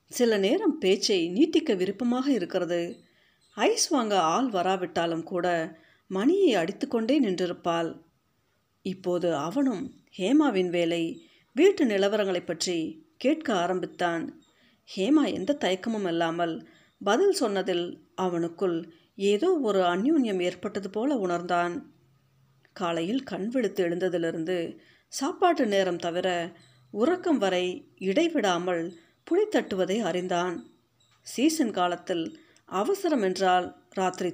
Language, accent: Tamil, native